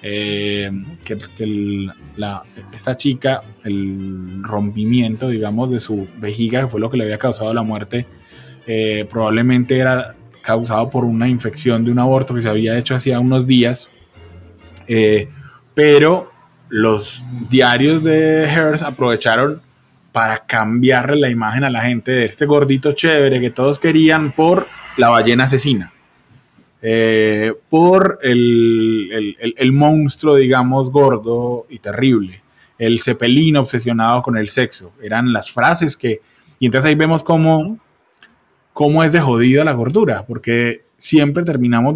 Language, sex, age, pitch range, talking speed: Spanish, male, 20-39, 110-145 Hz, 140 wpm